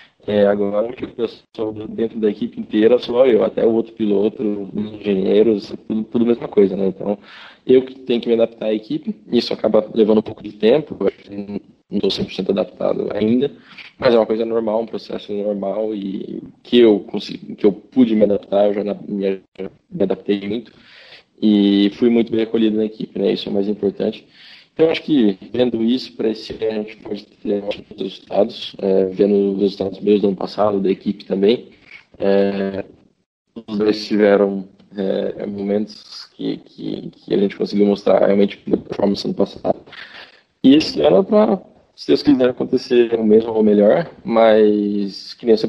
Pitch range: 100-115 Hz